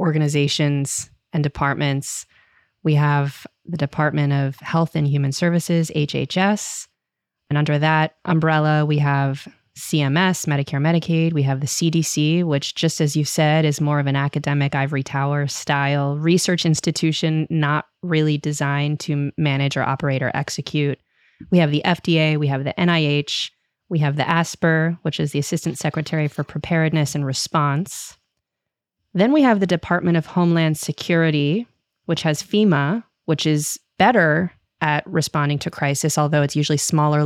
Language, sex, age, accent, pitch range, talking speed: English, female, 20-39, American, 145-170 Hz, 150 wpm